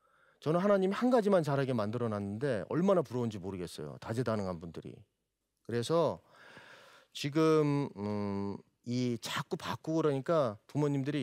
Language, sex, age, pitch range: Korean, male, 40-59, 115-170 Hz